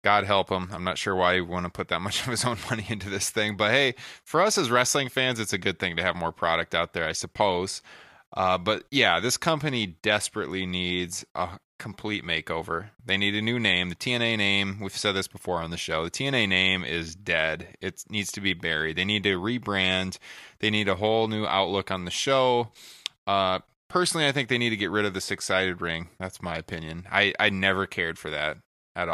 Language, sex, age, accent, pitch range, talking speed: English, male, 20-39, American, 90-110 Hz, 225 wpm